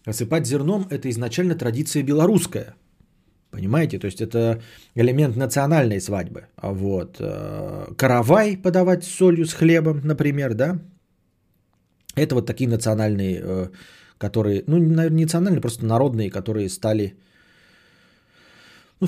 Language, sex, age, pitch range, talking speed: Bulgarian, male, 20-39, 105-140 Hz, 125 wpm